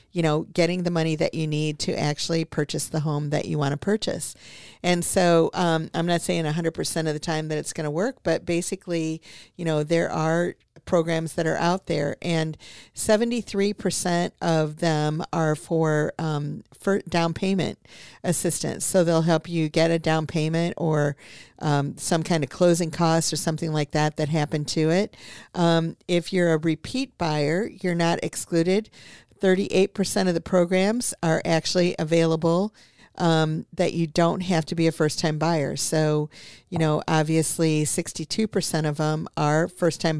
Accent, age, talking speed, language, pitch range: American, 50-69, 165 wpm, English, 155-175 Hz